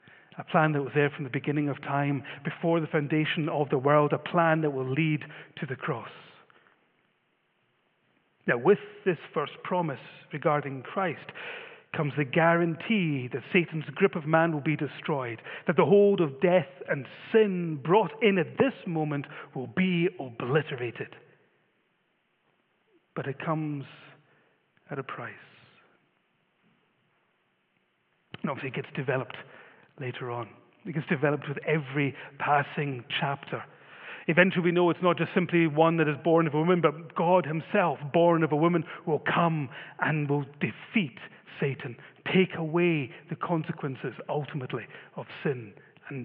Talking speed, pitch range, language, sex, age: 145 wpm, 145-180 Hz, English, male, 40-59